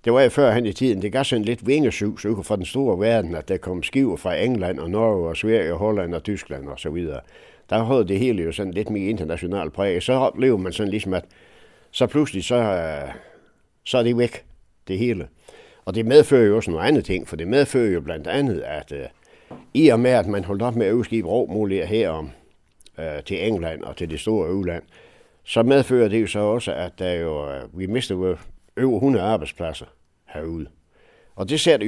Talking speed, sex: 205 wpm, male